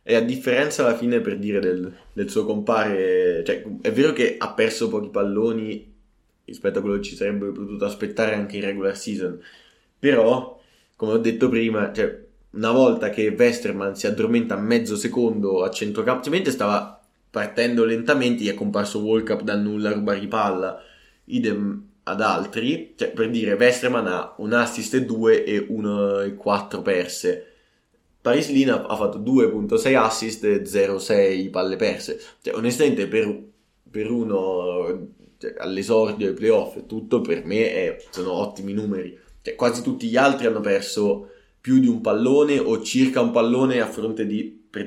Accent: native